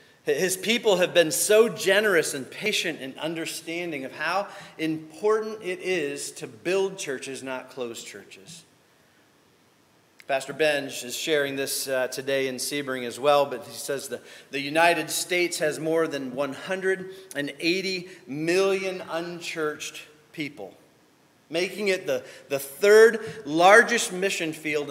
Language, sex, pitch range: English, male, 130-185 Hz